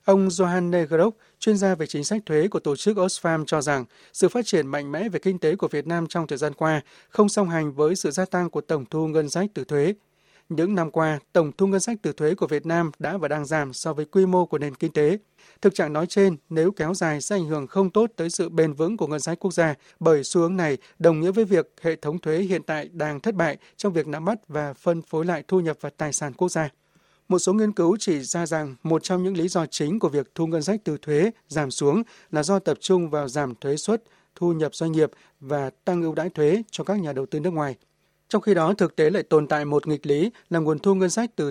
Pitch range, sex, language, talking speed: 150-190 Hz, male, Vietnamese, 265 wpm